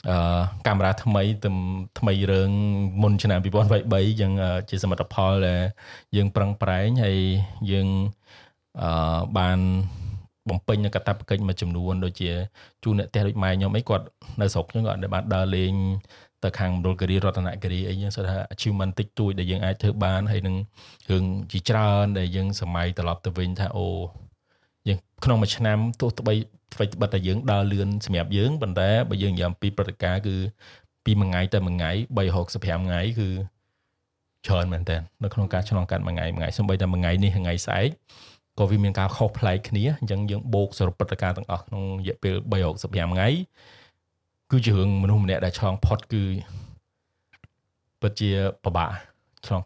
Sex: male